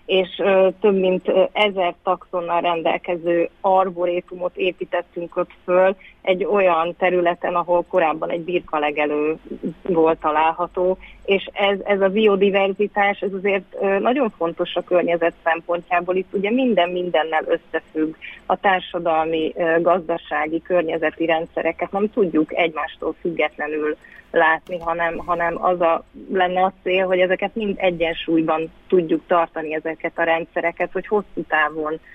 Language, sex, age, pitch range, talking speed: Hungarian, female, 30-49, 165-190 Hz, 125 wpm